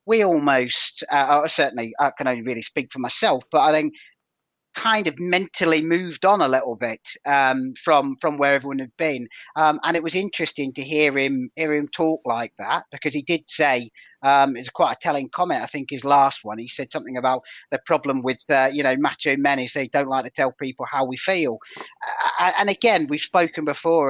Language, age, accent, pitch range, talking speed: English, 40-59, British, 135-165 Hz, 210 wpm